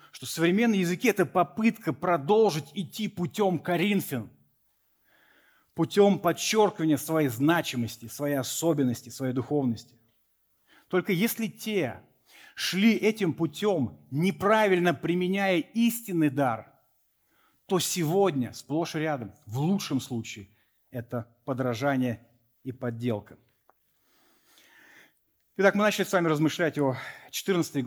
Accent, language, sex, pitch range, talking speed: native, Russian, male, 120-165 Hz, 105 wpm